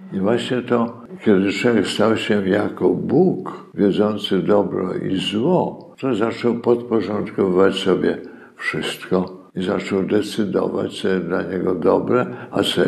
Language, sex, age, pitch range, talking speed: Polish, male, 60-79, 95-115 Hz, 130 wpm